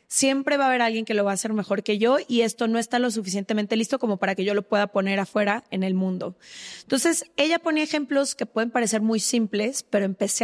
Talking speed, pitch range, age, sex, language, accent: 240 wpm, 205-235 Hz, 20-39, female, Spanish, Mexican